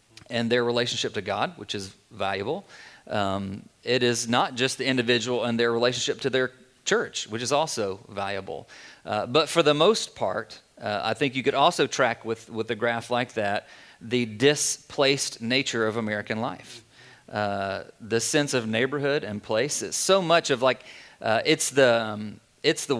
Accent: American